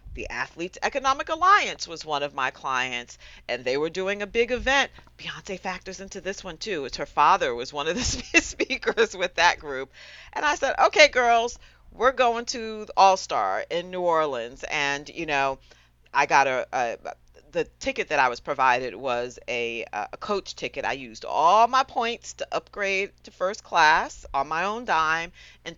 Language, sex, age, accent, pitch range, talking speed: English, female, 40-59, American, 140-210 Hz, 180 wpm